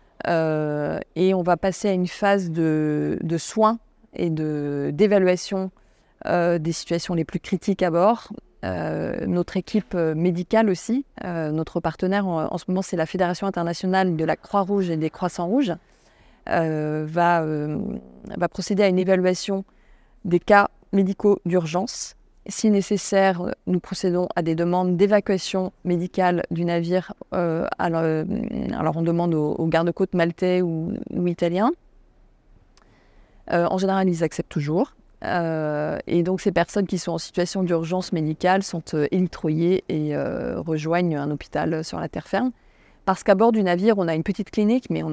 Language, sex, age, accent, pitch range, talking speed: French, female, 20-39, French, 165-195 Hz, 155 wpm